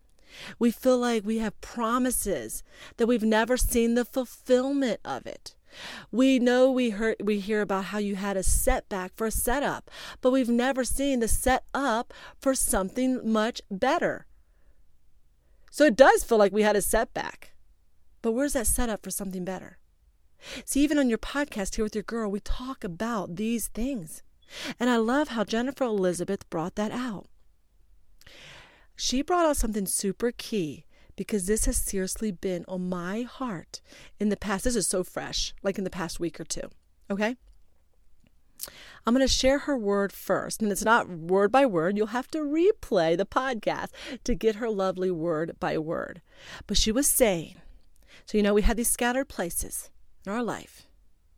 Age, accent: 40-59, American